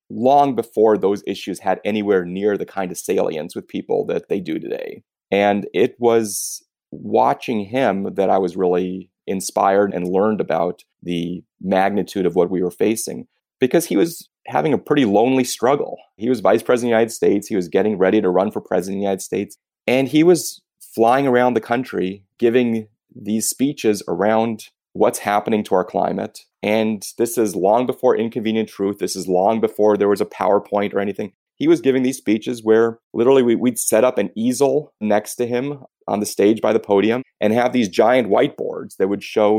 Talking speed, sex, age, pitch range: 190 wpm, male, 30-49, 100-125 Hz